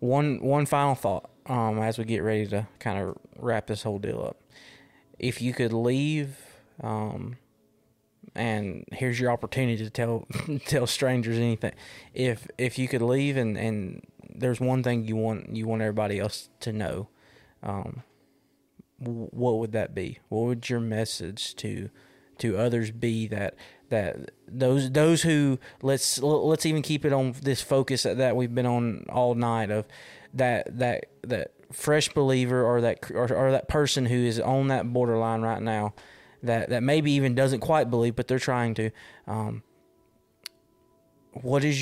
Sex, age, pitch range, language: male, 20-39, 110-130 Hz, English